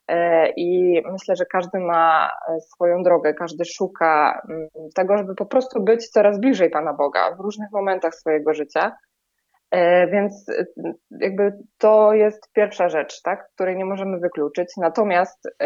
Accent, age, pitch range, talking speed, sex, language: native, 20-39, 170-210 Hz, 130 wpm, female, Polish